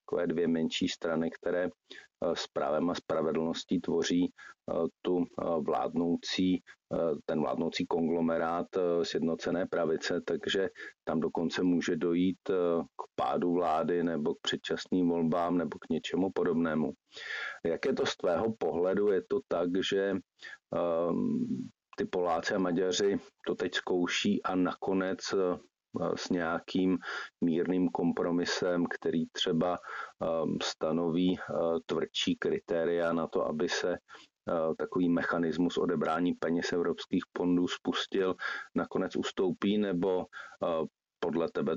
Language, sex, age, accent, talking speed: Czech, male, 40-59, native, 110 wpm